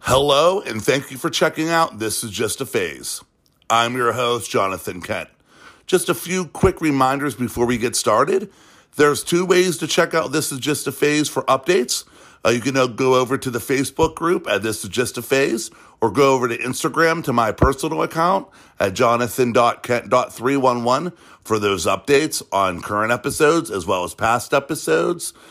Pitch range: 115-145 Hz